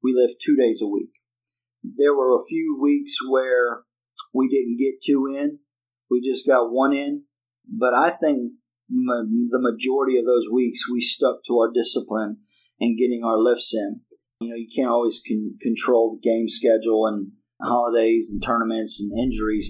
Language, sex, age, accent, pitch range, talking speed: English, male, 40-59, American, 115-130 Hz, 170 wpm